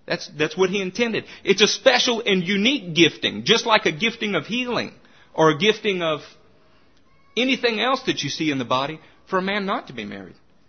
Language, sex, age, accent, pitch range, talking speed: English, male, 50-69, American, 160-235 Hz, 200 wpm